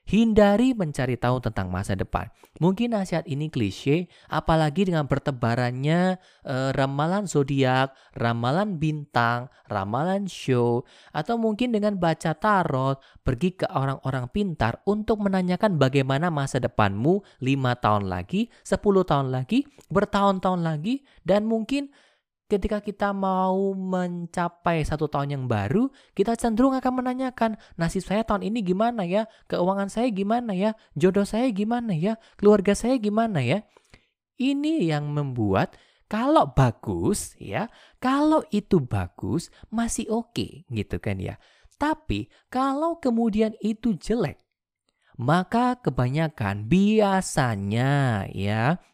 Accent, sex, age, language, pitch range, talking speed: native, male, 20-39, Indonesian, 135-215 Hz, 120 wpm